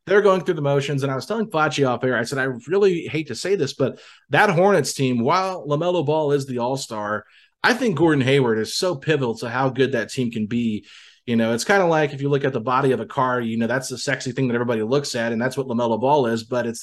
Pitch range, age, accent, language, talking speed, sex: 120-155 Hz, 30-49, American, English, 275 wpm, male